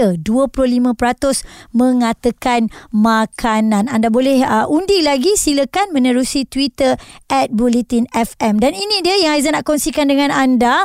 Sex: male